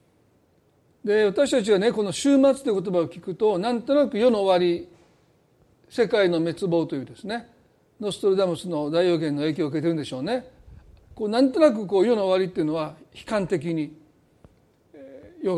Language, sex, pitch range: Japanese, male, 165-240 Hz